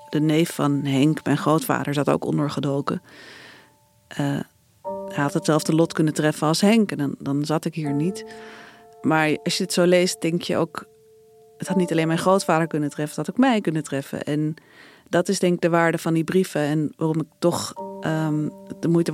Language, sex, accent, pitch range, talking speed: Dutch, female, Dutch, 150-175 Hz, 205 wpm